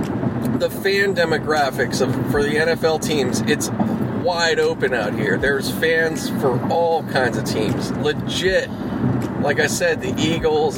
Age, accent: 30-49, American